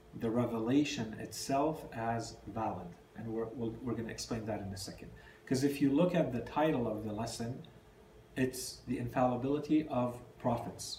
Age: 40-59